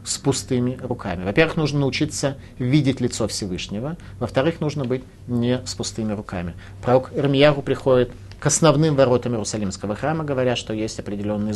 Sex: male